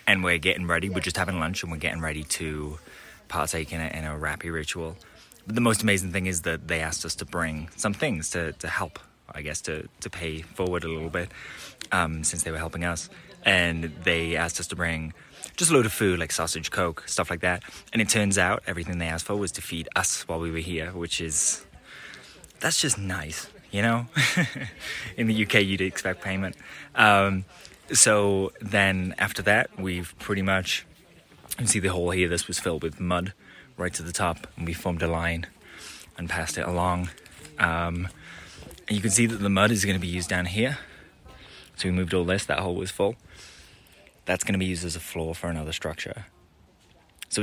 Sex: male